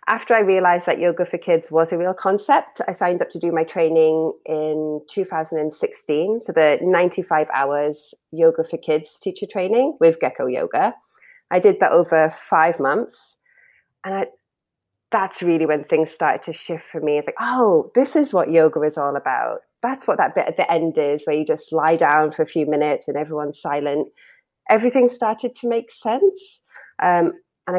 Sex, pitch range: female, 160-220 Hz